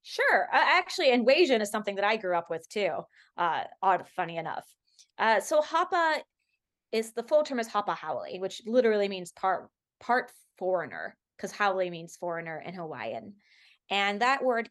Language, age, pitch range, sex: English, 20-39, 170-220 Hz, female